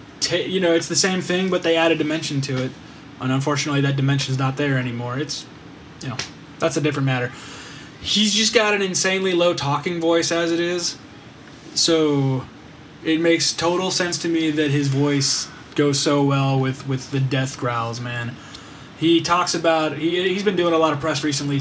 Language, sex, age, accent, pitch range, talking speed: English, male, 20-39, American, 130-160 Hz, 195 wpm